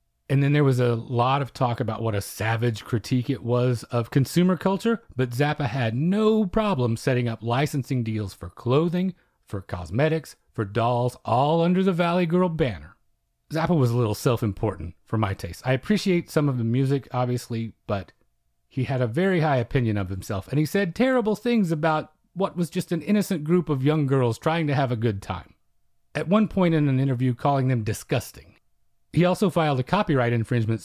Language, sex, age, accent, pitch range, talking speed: English, male, 40-59, American, 115-160 Hz, 195 wpm